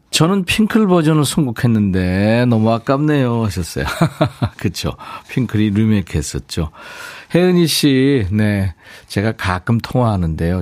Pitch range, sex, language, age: 100-155 Hz, male, Korean, 40-59